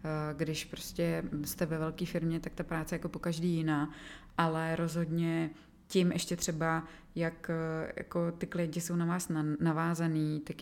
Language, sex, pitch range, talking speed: Czech, female, 150-165 Hz, 160 wpm